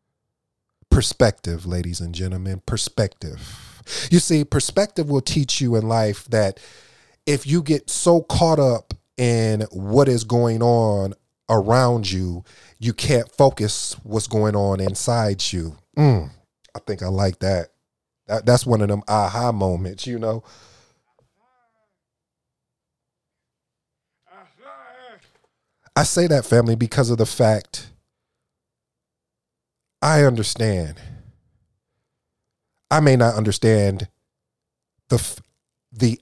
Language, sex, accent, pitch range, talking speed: English, male, American, 100-125 Hz, 110 wpm